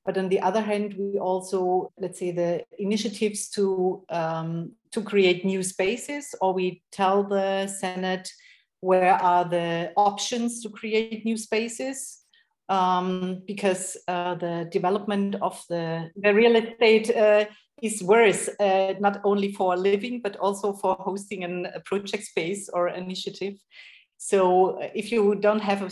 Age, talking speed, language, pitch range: 40-59, 145 wpm, English, 185-215 Hz